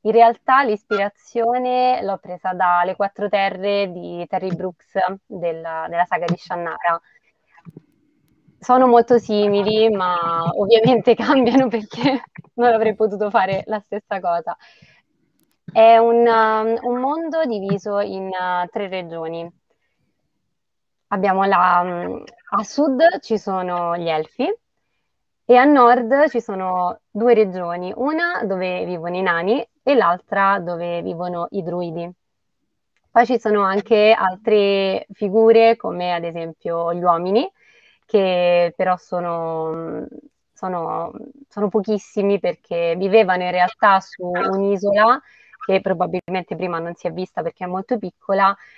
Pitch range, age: 180-225 Hz, 20-39